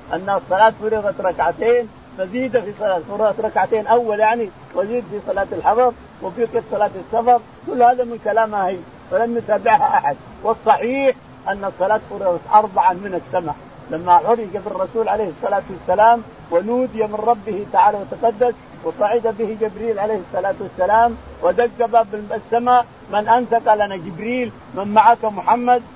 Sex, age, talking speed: male, 50-69, 140 wpm